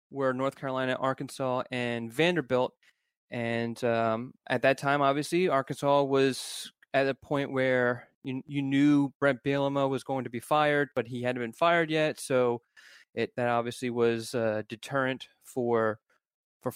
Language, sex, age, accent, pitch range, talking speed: English, male, 20-39, American, 115-140 Hz, 160 wpm